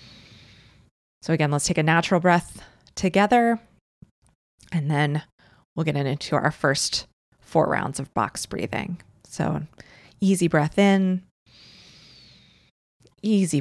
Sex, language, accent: female, English, American